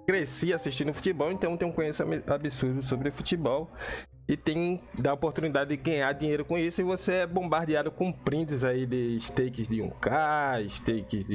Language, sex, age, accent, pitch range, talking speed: Portuguese, male, 20-39, Brazilian, 115-150 Hz, 165 wpm